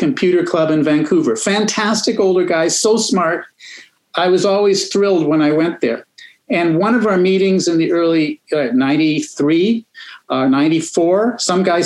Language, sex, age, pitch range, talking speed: English, male, 50-69, 160-215 Hz, 155 wpm